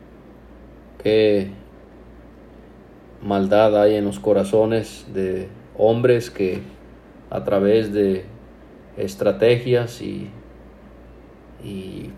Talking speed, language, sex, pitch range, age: 75 wpm, Spanish, male, 100-110 Hz, 40-59